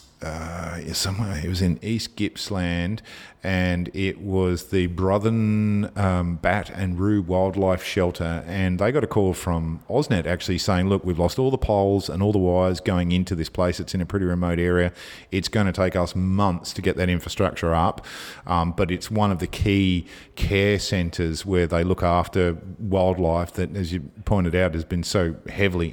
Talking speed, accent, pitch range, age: 185 wpm, Australian, 90-105 Hz, 40-59